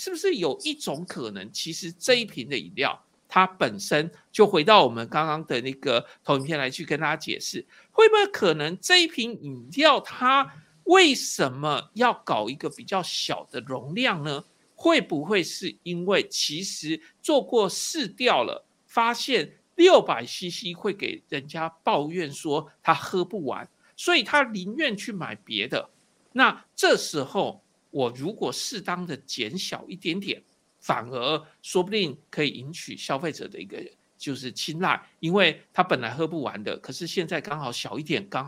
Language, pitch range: Chinese, 150-220 Hz